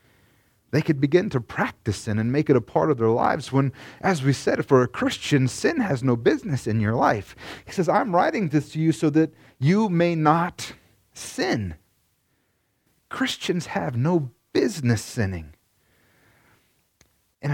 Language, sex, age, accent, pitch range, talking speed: English, male, 30-49, American, 115-155 Hz, 160 wpm